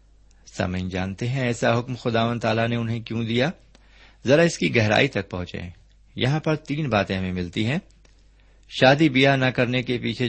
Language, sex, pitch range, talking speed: Urdu, male, 95-125 Hz, 185 wpm